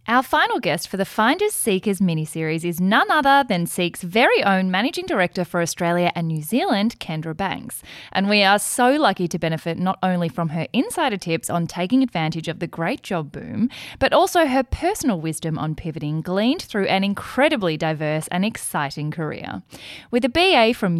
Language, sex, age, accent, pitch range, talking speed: English, female, 10-29, Australian, 165-260 Hz, 185 wpm